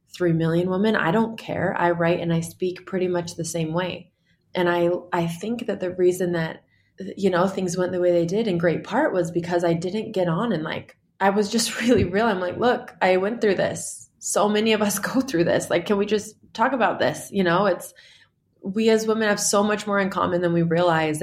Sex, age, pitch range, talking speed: female, 20-39, 170-205 Hz, 235 wpm